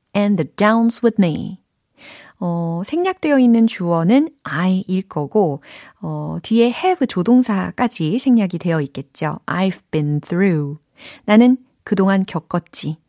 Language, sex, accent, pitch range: Korean, female, native, 160-235 Hz